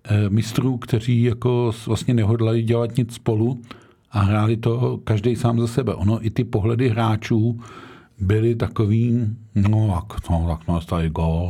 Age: 50-69